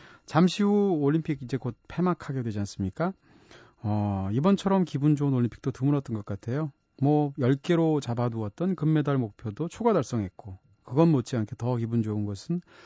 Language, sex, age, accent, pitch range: Korean, male, 30-49, native, 115-165 Hz